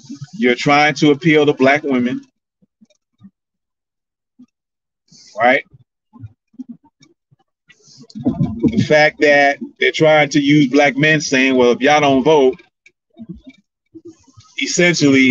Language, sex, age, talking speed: English, male, 30-49, 95 wpm